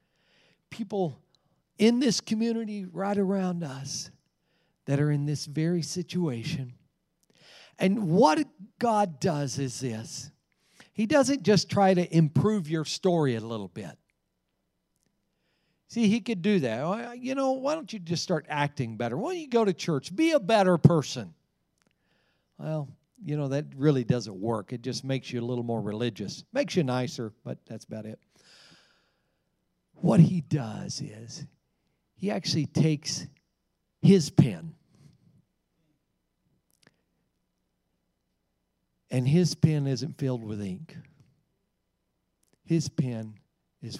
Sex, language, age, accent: male, English, 50-69, American